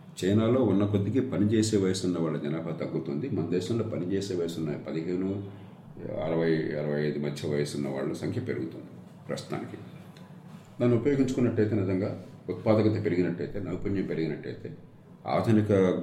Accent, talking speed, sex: native, 115 wpm, male